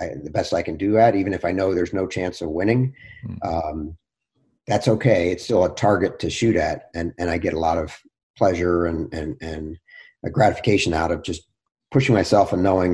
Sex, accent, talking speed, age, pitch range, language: male, American, 215 wpm, 50-69, 90-115 Hz, English